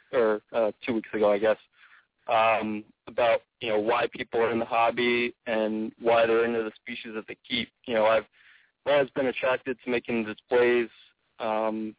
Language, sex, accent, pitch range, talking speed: English, male, American, 110-120 Hz, 180 wpm